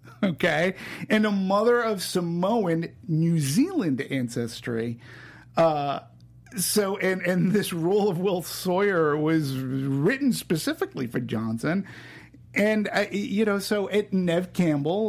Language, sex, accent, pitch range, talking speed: English, male, American, 125-195 Hz, 125 wpm